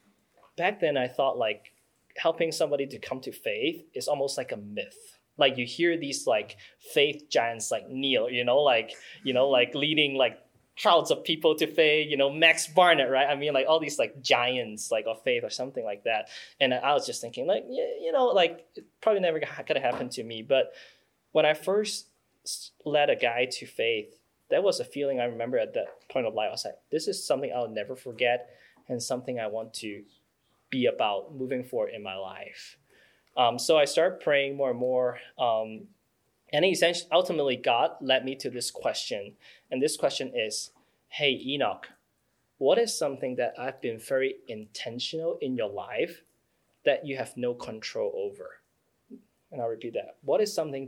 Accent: Chinese